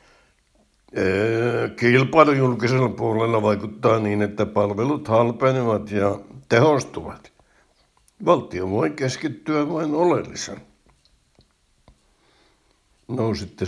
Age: 60-79